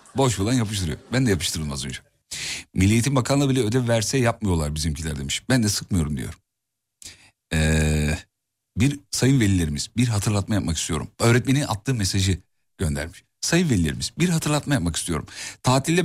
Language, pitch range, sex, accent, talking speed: Turkish, 100-135 Hz, male, native, 145 wpm